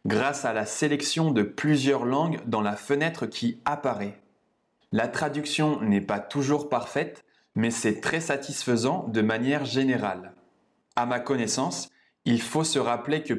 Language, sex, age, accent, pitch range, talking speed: French, male, 20-39, French, 115-150 Hz, 150 wpm